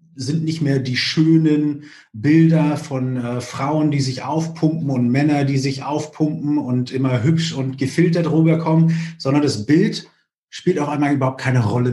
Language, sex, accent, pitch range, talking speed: German, male, German, 125-160 Hz, 160 wpm